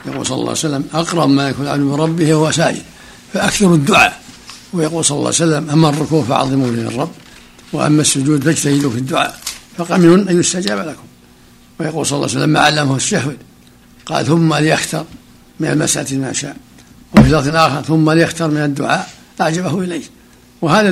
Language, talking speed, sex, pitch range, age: Arabic, 165 wpm, male, 130-160 Hz, 60-79